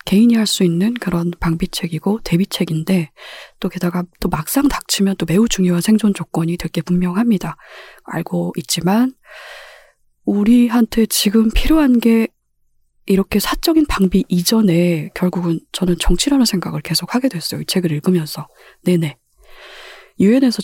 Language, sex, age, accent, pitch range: Korean, female, 20-39, native, 175-225 Hz